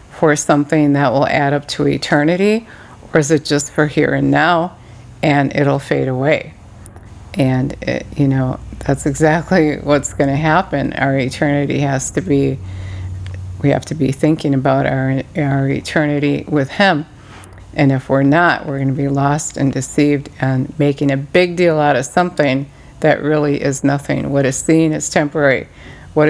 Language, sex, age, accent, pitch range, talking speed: English, female, 50-69, American, 135-155 Hz, 170 wpm